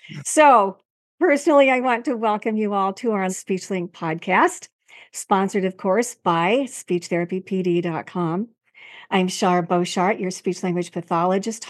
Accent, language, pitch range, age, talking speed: American, English, 185-225 Hz, 50-69, 120 wpm